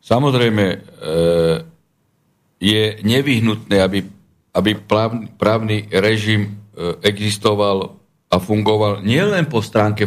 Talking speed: 85 wpm